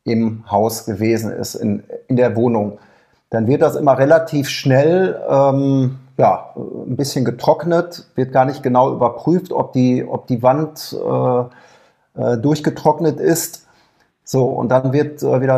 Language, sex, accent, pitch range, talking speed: German, male, German, 130-155 Hz, 150 wpm